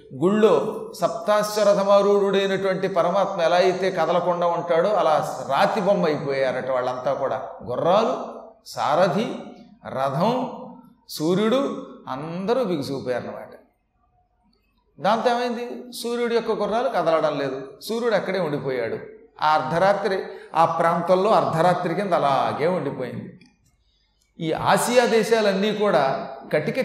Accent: native